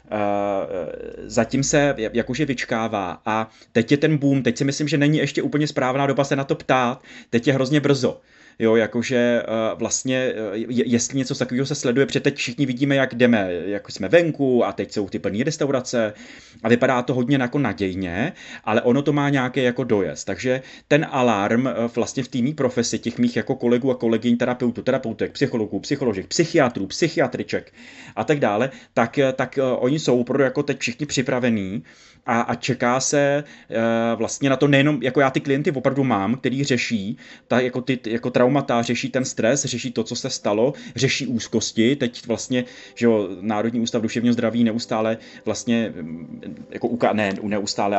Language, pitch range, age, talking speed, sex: Czech, 115-135 Hz, 30-49, 170 wpm, male